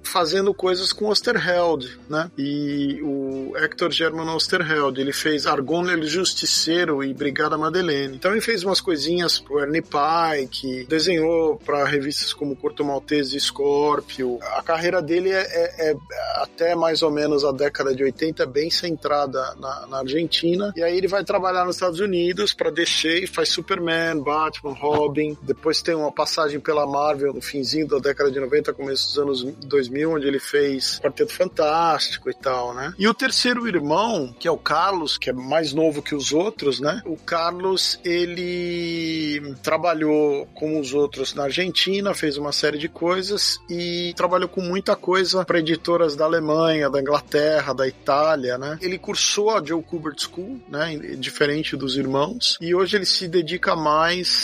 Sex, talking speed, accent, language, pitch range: male, 170 wpm, Brazilian, Portuguese, 145-175 Hz